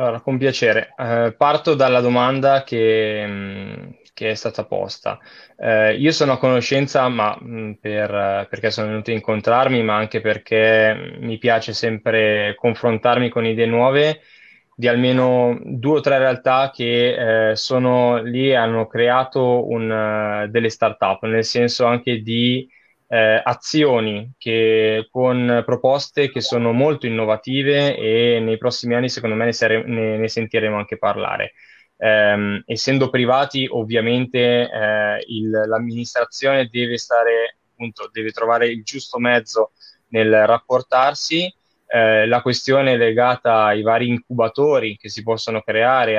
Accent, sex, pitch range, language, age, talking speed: Italian, male, 110-125 Hz, Romanian, 20-39, 135 wpm